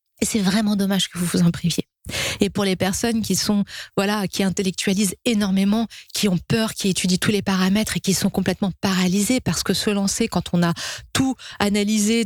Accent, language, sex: French, French, female